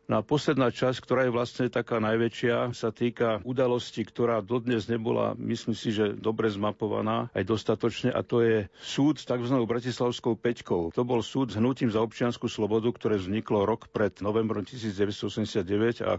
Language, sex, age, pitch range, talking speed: Slovak, male, 50-69, 105-120 Hz, 165 wpm